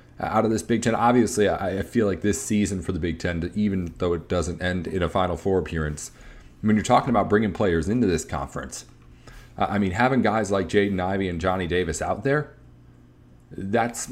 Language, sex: English, male